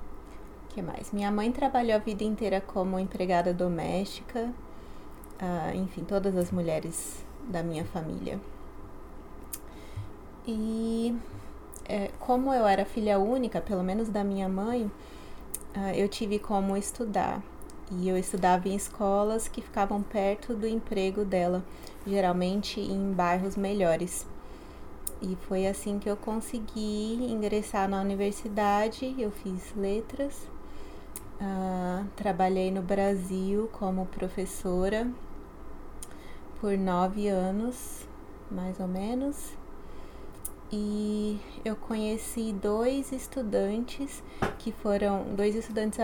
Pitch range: 185-215 Hz